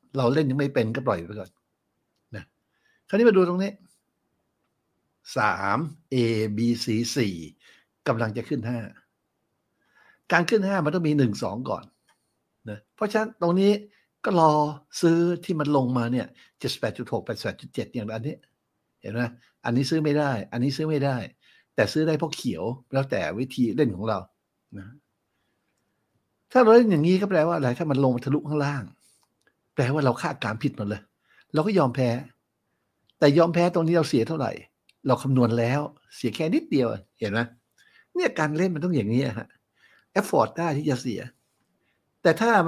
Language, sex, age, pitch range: Thai, male, 60-79, 115-165 Hz